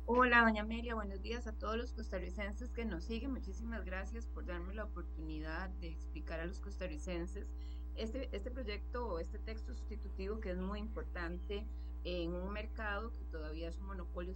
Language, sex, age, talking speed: Spanish, female, 30-49, 175 wpm